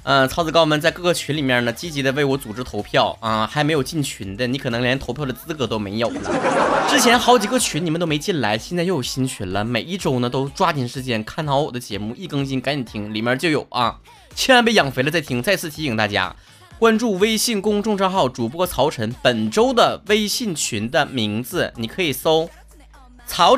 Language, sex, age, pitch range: Chinese, male, 20-39, 125-190 Hz